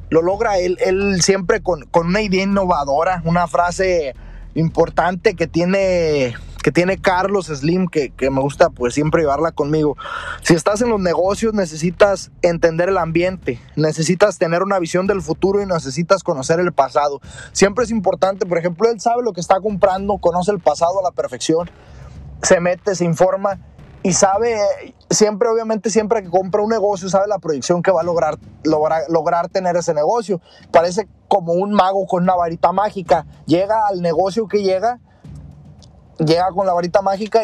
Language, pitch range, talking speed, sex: Spanish, 165-200 Hz, 170 wpm, male